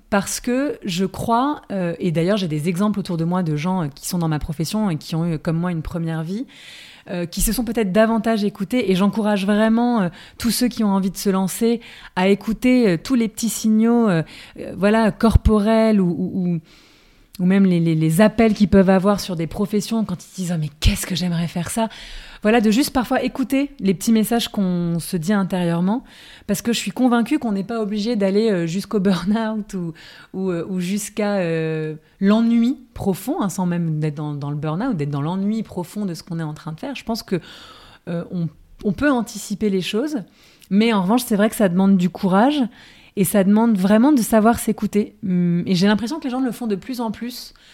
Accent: French